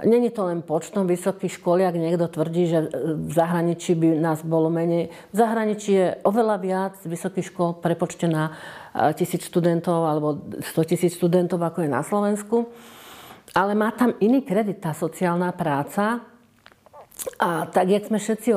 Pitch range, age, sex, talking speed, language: 175-200 Hz, 50-69, female, 155 wpm, Slovak